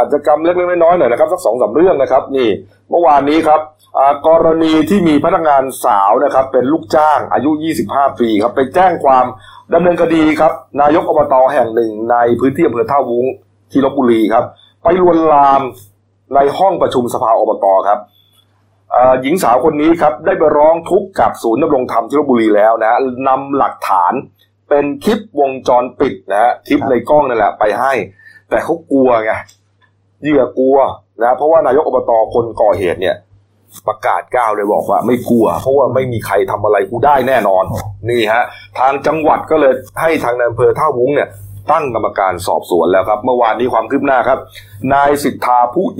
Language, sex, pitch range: Thai, male, 110-155 Hz